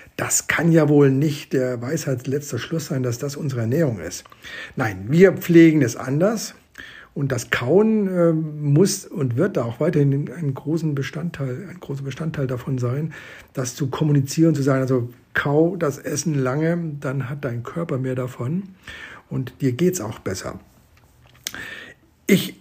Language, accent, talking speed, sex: German, German, 155 wpm, male